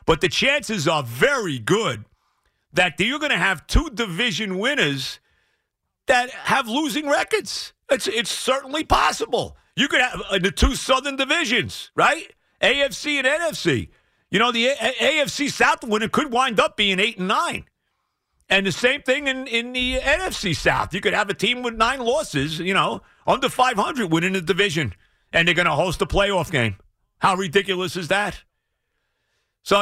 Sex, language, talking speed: male, English, 165 wpm